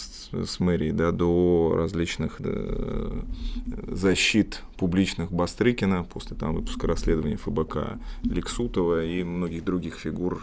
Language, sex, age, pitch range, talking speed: Russian, male, 20-39, 85-105 Hz, 100 wpm